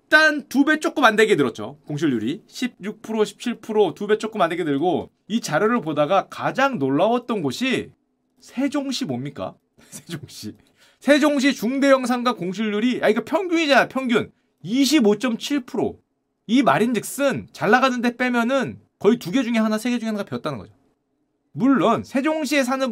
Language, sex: Korean, male